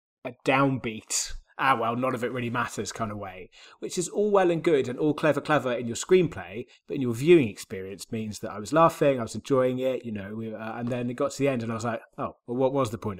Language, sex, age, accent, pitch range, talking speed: English, male, 30-49, British, 115-140 Hz, 270 wpm